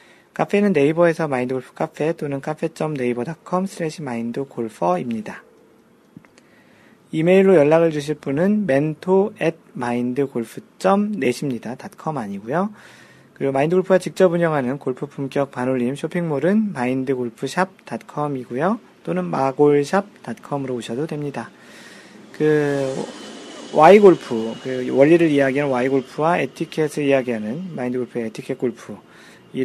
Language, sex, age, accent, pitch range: Korean, male, 40-59, native, 125-180 Hz